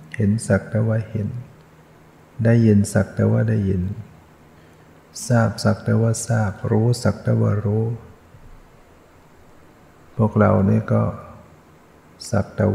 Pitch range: 95-110 Hz